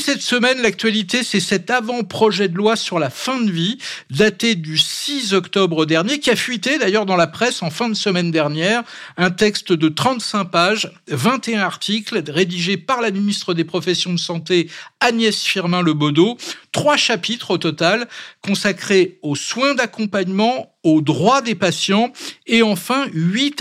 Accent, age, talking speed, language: French, 50-69, 160 wpm, French